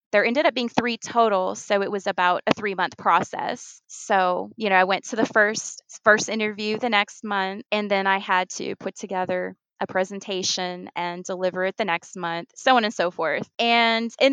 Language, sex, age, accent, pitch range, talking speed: English, female, 20-39, American, 190-230 Hz, 200 wpm